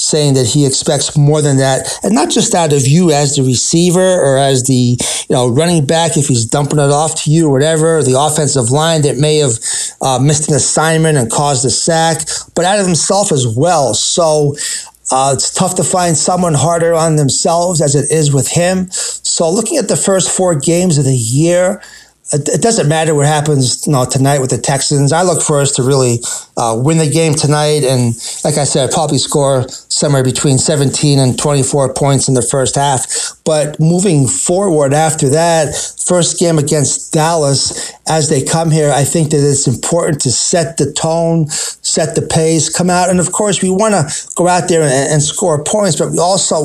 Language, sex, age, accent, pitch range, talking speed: English, male, 30-49, American, 140-170 Hz, 200 wpm